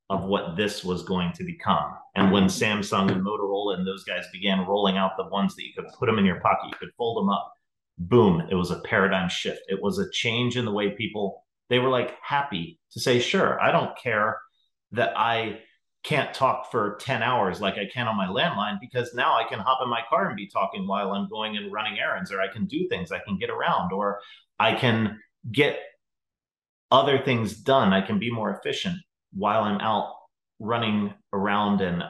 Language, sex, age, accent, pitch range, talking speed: English, male, 30-49, American, 95-120 Hz, 215 wpm